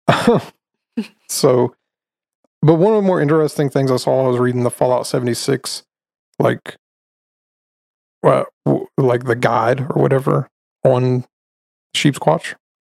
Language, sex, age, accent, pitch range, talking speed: English, male, 30-49, American, 120-140 Hz, 120 wpm